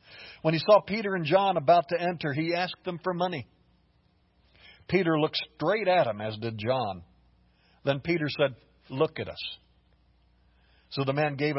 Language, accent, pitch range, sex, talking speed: English, American, 115-175 Hz, male, 165 wpm